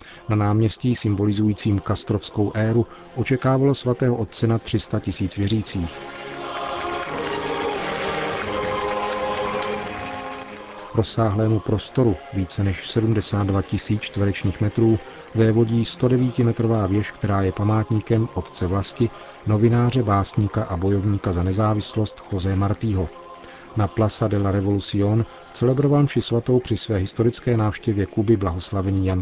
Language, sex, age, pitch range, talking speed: Czech, male, 40-59, 95-115 Hz, 100 wpm